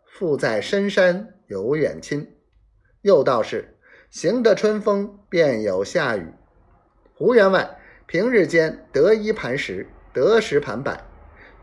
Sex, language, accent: male, Chinese, native